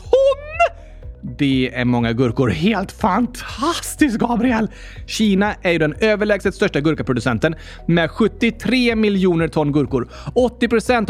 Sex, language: male, Swedish